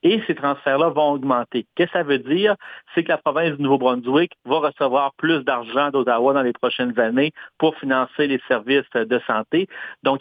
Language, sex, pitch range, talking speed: French, male, 120-140 Hz, 190 wpm